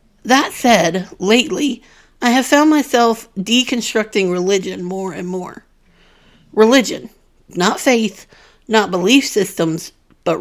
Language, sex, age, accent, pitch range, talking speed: English, female, 50-69, American, 195-250 Hz, 110 wpm